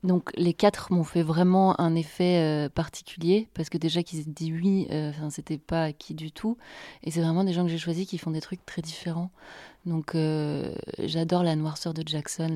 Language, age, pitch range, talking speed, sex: French, 30-49, 160-185 Hz, 210 wpm, female